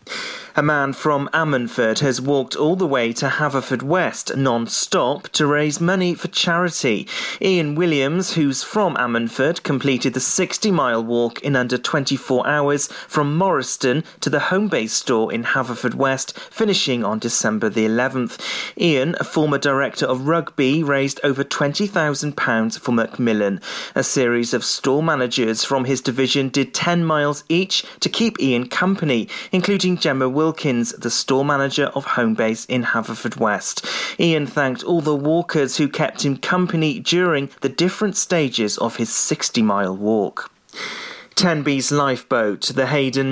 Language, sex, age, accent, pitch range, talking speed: English, male, 30-49, British, 125-165 Hz, 145 wpm